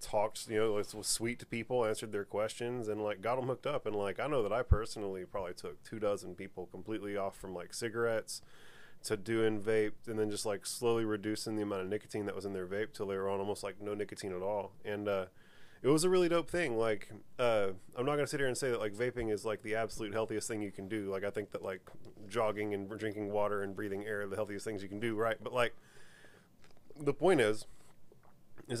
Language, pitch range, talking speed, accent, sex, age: English, 105-120 Hz, 240 wpm, American, male, 30-49